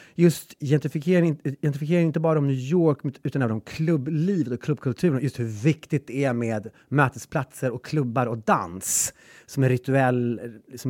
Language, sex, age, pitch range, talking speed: English, male, 30-49, 115-150 Hz, 155 wpm